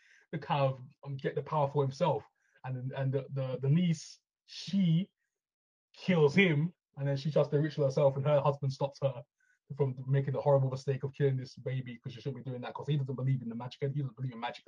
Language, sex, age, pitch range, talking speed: English, male, 20-39, 125-145 Hz, 230 wpm